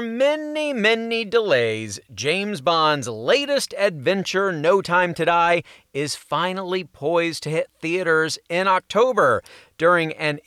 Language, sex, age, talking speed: English, male, 40-59, 120 wpm